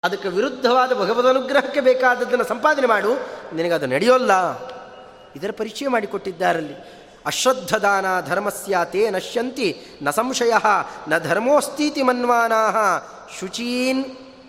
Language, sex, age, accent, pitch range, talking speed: Kannada, male, 30-49, native, 180-245 Hz, 90 wpm